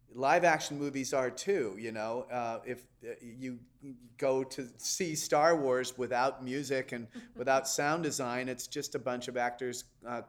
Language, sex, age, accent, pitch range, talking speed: English, male, 40-59, American, 120-135 Hz, 165 wpm